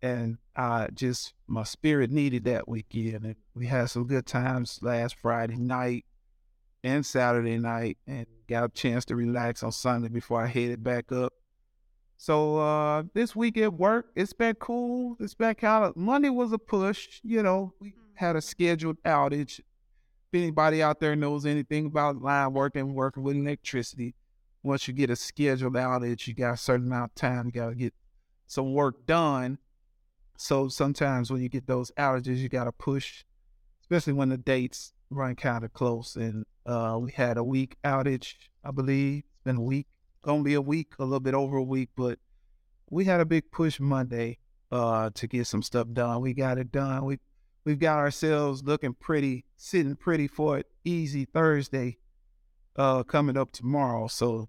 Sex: male